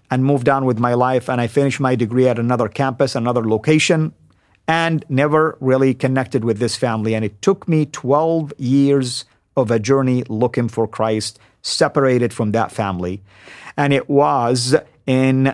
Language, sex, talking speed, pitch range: English, male, 165 wpm, 110-135 Hz